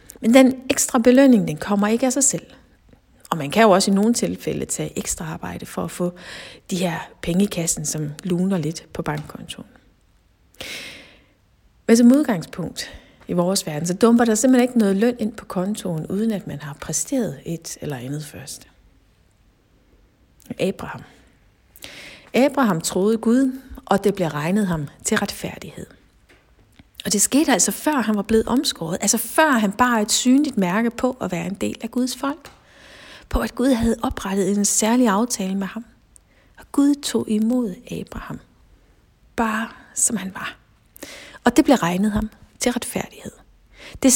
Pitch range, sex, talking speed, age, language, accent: 175-250 Hz, female, 160 wpm, 60-79, Danish, native